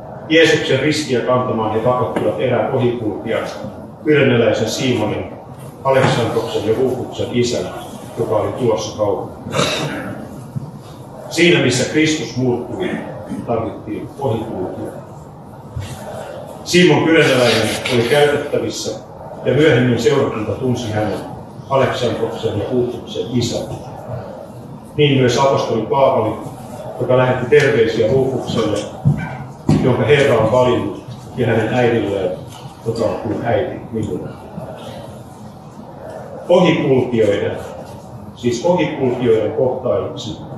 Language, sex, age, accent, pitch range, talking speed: Finnish, male, 40-59, native, 115-145 Hz, 90 wpm